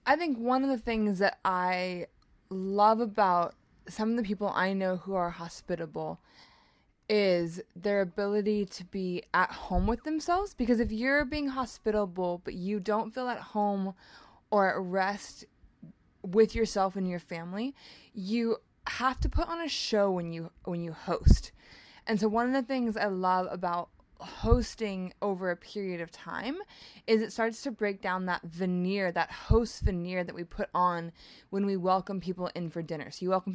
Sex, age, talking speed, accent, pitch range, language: female, 20-39, 175 wpm, American, 180-220 Hz, English